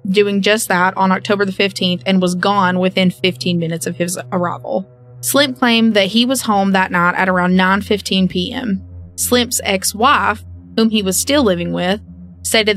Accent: American